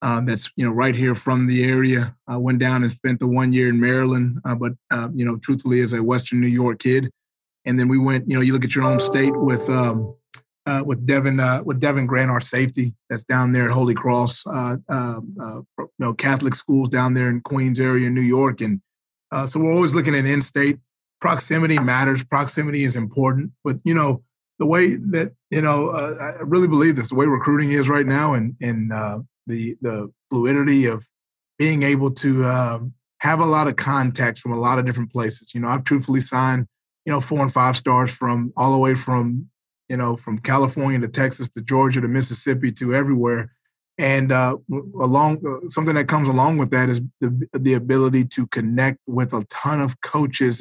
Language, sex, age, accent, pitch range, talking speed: English, male, 30-49, American, 125-140 Hz, 205 wpm